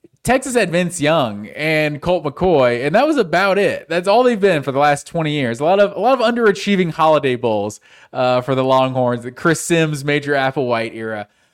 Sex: male